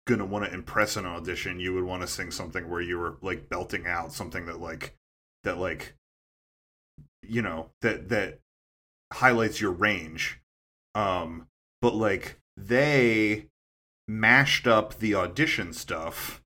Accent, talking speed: American, 140 wpm